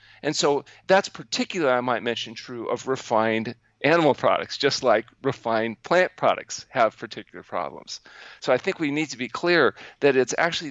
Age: 40-59